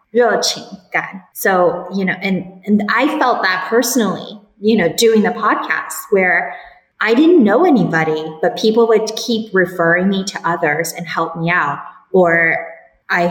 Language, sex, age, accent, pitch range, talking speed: English, female, 20-39, American, 175-215 Hz, 150 wpm